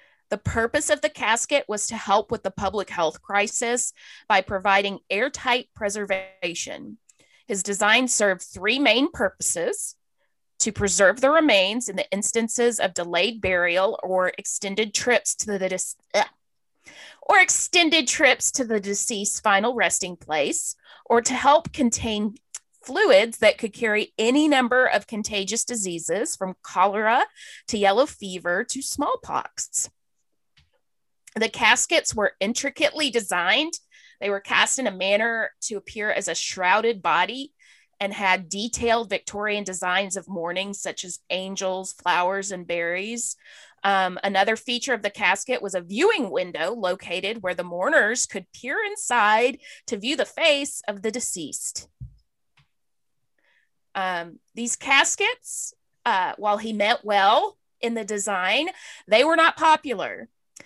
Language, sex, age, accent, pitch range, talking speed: English, female, 30-49, American, 195-265 Hz, 135 wpm